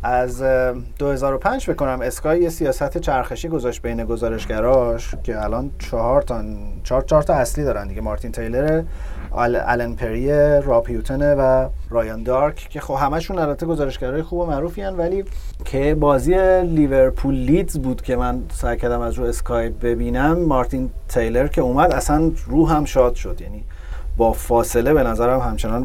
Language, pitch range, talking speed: Persian, 115-150 Hz, 155 wpm